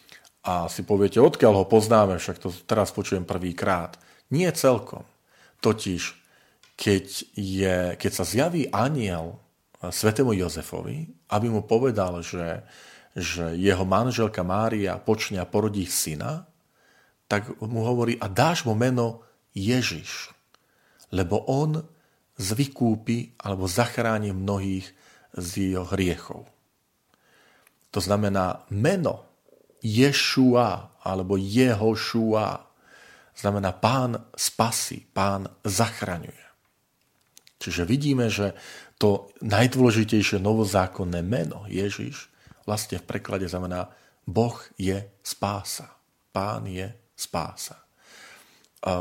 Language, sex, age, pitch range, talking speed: Slovak, male, 40-59, 95-115 Hz, 100 wpm